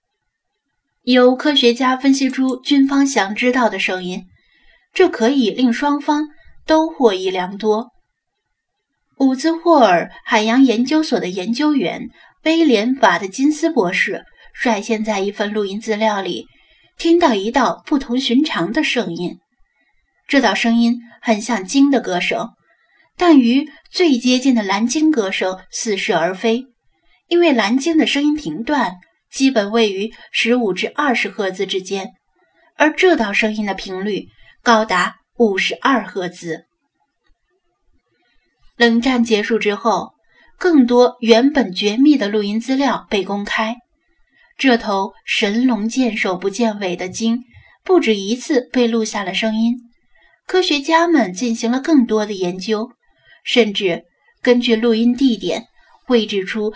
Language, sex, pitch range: Chinese, female, 210-275 Hz